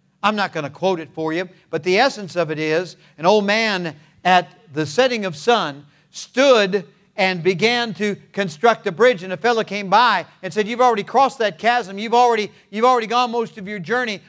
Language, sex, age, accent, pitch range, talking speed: English, male, 50-69, American, 190-255 Hz, 210 wpm